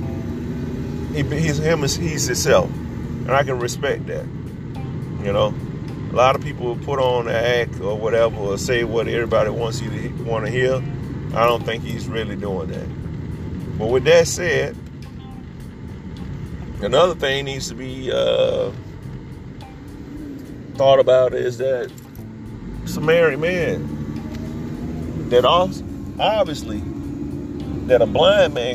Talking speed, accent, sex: 125 wpm, American, male